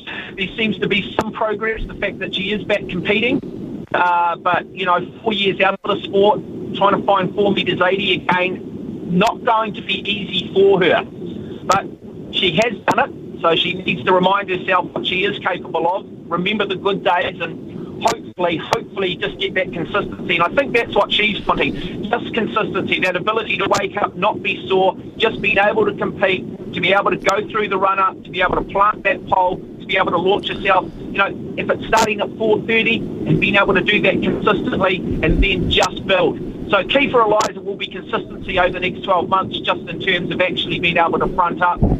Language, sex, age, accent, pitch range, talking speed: English, male, 40-59, Australian, 180-205 Hz, 210 wpm